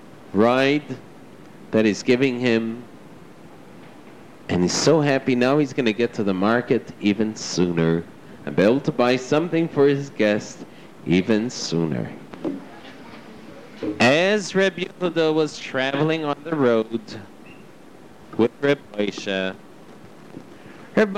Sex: male